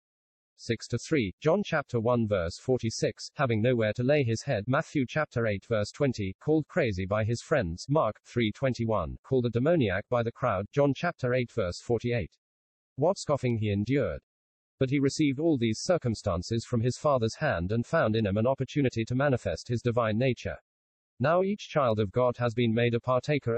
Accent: British